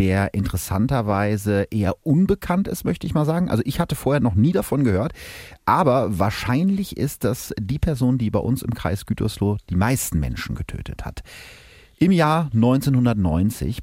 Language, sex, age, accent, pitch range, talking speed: German, male, 30-49, German, 95-120 Hz, 160 wpm